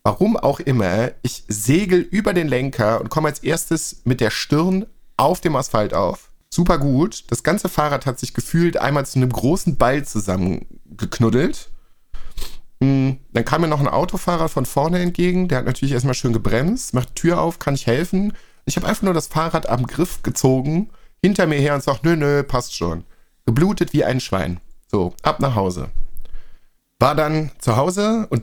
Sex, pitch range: male, 115-160 Hz